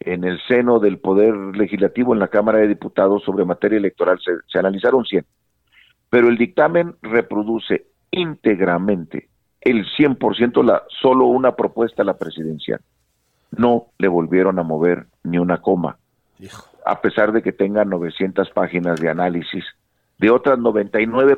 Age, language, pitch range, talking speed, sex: 50-69, Spanish, 90-125 Hz, 145 wpm, male